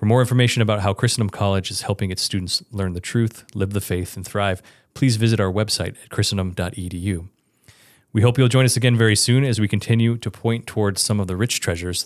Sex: male